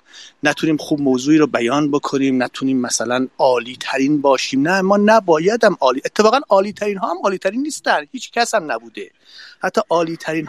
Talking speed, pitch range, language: 175 wpm, 135-195 Hz, Persian